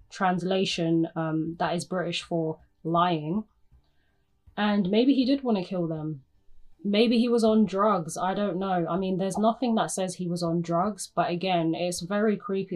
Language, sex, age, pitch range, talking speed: English, female, 20-39, 170-205 Hz, 180 wpm